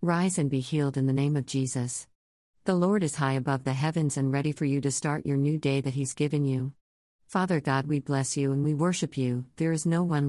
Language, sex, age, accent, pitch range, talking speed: English, female, 50-69, American, 130-155 Hz, 245 wpm